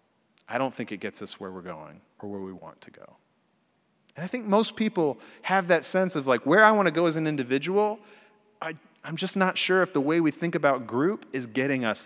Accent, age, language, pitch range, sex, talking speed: American, 30-49, English, 115-175 Hz, male, 240 wpm